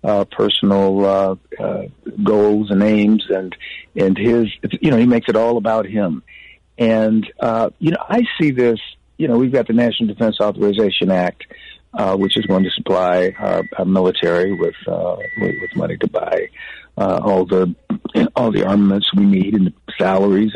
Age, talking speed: 60-79, 180 wpm